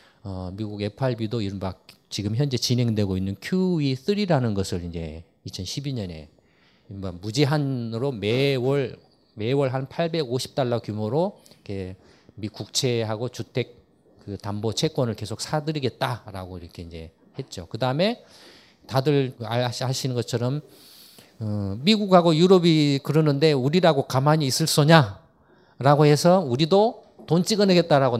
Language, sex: Korean, male